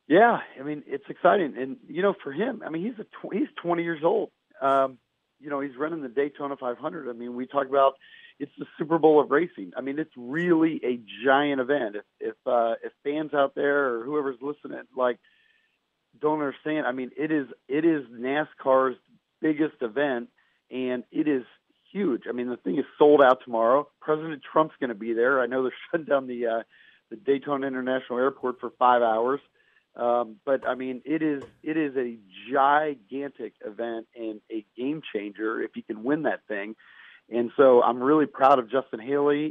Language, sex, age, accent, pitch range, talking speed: English, male, 40-59, American, 120-150 Hz, 195 wpm